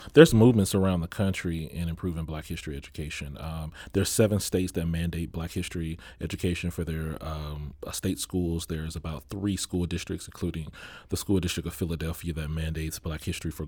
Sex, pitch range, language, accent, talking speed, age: male, 85-95 Hz, English, American, 180 wpm, 30-49